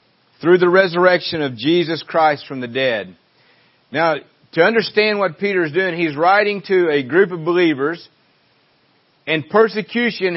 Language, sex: English, male